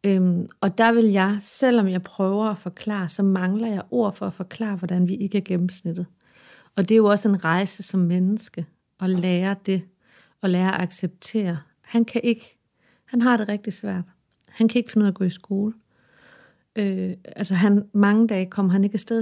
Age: 40-59